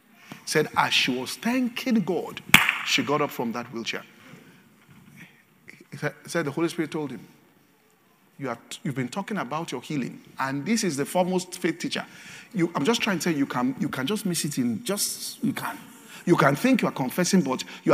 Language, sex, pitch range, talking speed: English, male, 130-195 Hz, 185 wpm